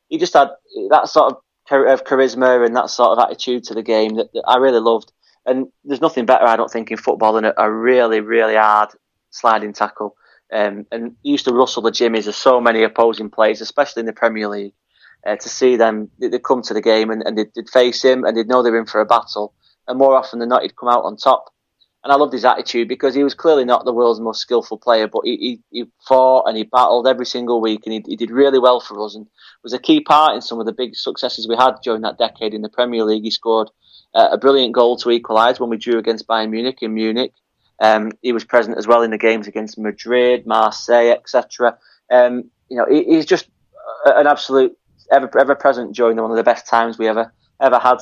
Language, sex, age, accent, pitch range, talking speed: English, male, 20-39, British, 110-125 Hz, 240 wpm